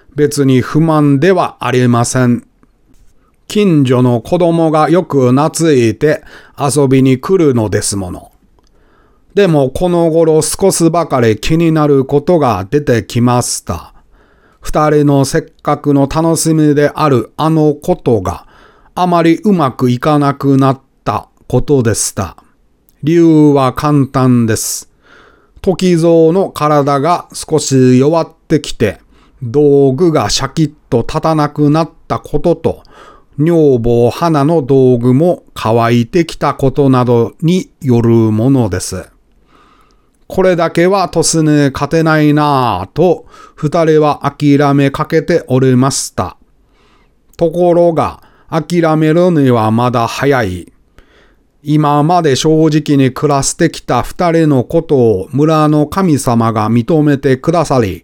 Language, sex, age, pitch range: Japanese, male, 40-59, 130-160 Hz